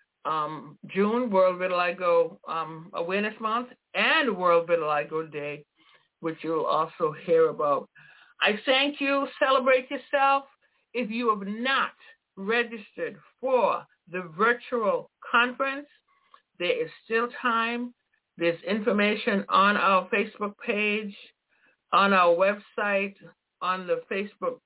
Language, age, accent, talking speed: English, 60-79, American, 110 wpm